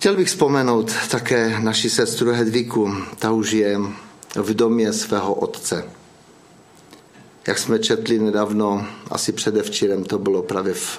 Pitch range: 105-125 Hz